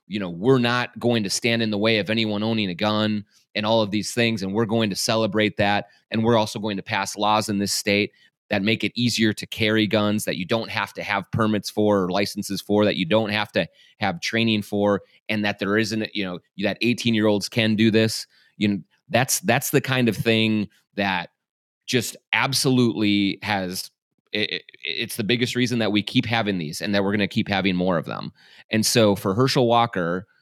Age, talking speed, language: 30-49, 220 wpm, English